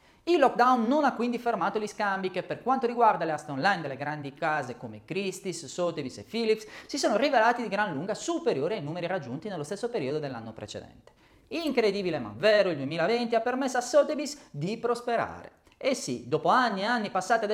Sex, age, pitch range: male, 30-49, 165-245 Hz